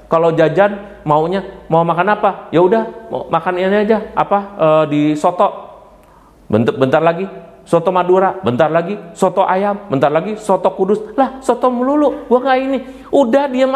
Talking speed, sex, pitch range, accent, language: 155 wpm, male, 120-200 Hz, native, Indonesian